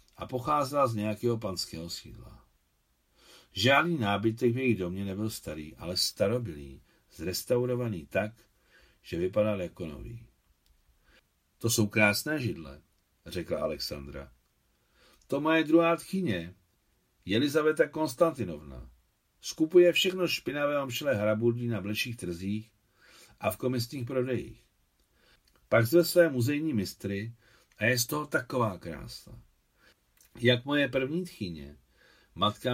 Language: Czech